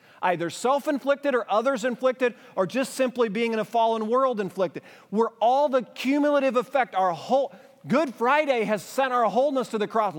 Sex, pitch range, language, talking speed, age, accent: male, 155-260 Hz, English, 175 wpm, 40-59, American